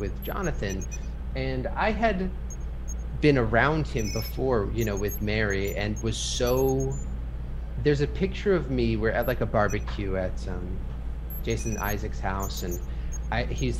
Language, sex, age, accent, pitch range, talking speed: English, male, 30-49, American, 105-135 Hz, 150 wpm